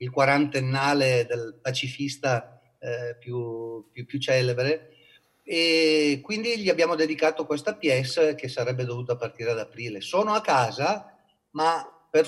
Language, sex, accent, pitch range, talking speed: Italian, male, native, 125-160 Hz, 130 wpm